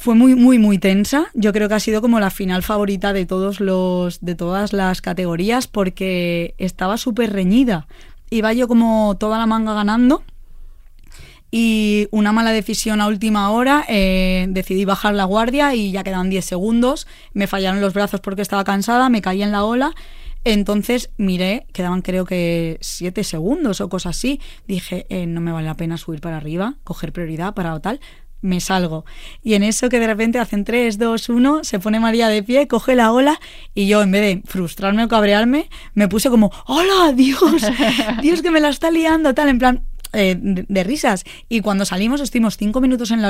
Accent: Spanish